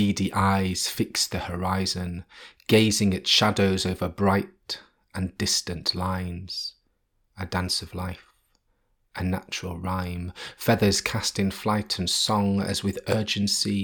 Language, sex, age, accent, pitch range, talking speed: English, male, 30-49, British, 95-105 Hz, 120 wpm